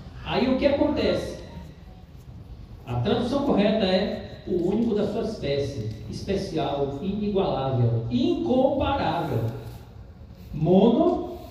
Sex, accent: male, Brazilian